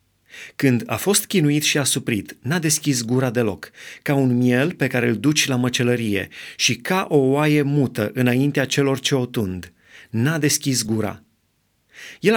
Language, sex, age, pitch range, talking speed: Romanian, male, 30-49, 120-155 Hz, 165 wpm